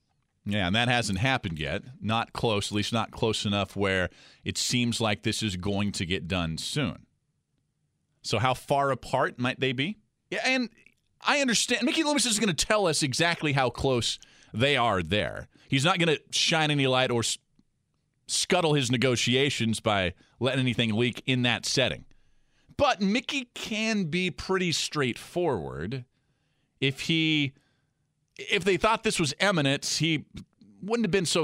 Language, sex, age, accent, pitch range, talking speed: English, male, 40-59, American, 105-145 Hz, 160 wpm